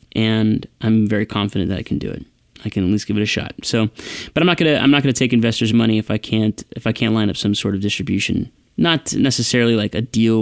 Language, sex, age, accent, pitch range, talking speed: English, male, 20-39, American, 110-125 Hz, 260 wpm